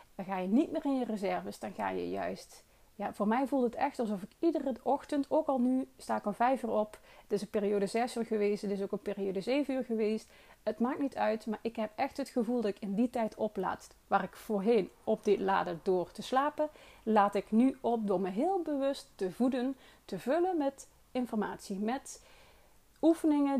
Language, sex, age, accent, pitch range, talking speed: Dutch, female, 30-49, Dutch, 205-265 Hz, 220 wpm